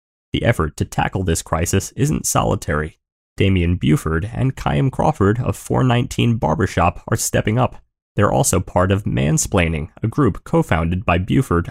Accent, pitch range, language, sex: American, 85-120 Hz, English, male